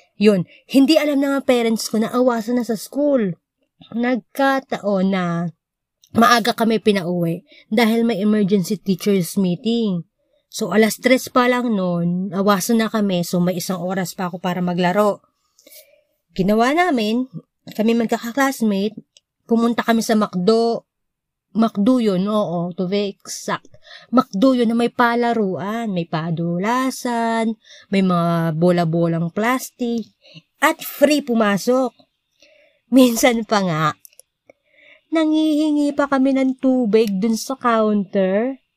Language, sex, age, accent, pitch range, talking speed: Filipino, female, 20-39, native, 205-285 Hz, 115 wpm